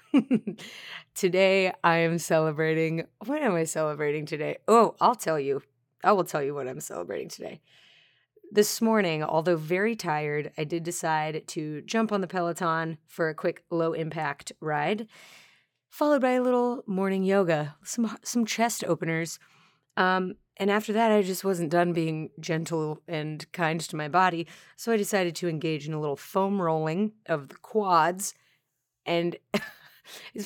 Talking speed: 155 wpm